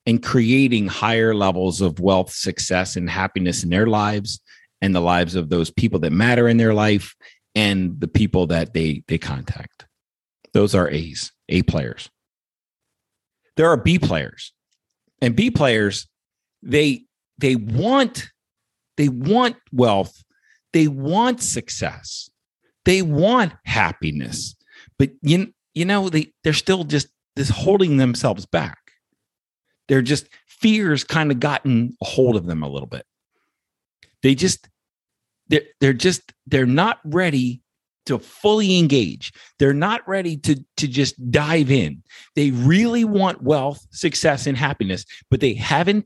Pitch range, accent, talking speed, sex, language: 105-155 Hz, American, 140 wpm, male, English